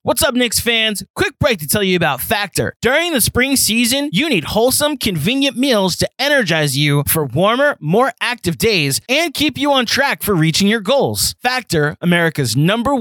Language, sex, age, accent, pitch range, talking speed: English, male, 20-39, American, 155-245 Hz, 185 wpm